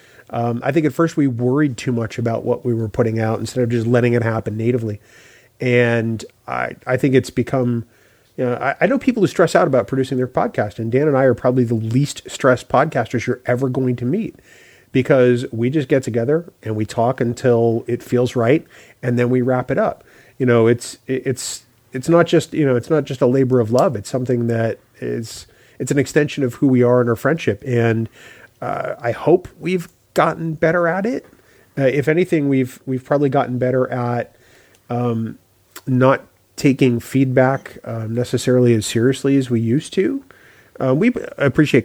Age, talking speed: 30-49, 195 wpm